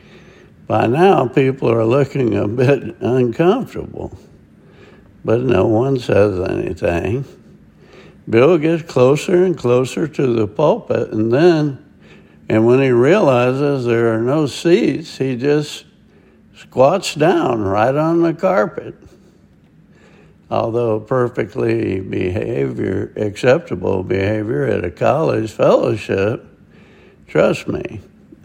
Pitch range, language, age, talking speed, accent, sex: 110-140 Hz, English, 60-79, 105 wpm, American, male